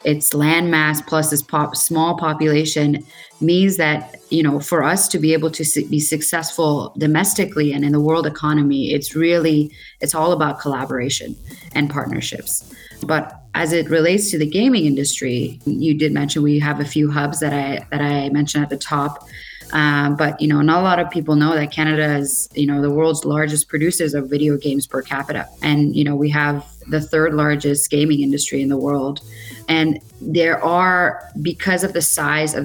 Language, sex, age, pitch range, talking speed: English, female, 20-39, 145-160 Hz, 185 wpm